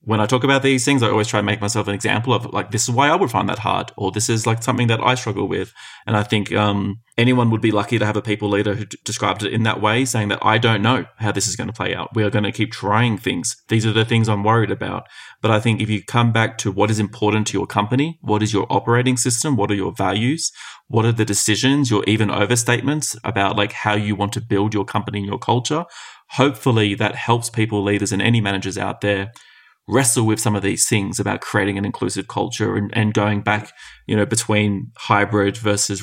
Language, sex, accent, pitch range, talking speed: English, male, Australian, 105-115 Hz, 250 wpm